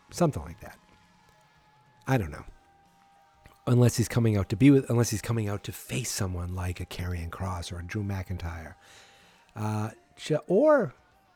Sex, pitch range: male, 95-135 Hz